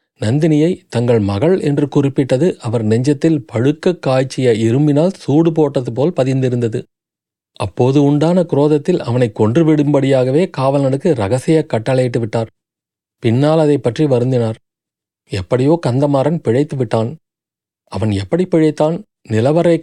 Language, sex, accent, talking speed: Tamil, male, native, 95 wpm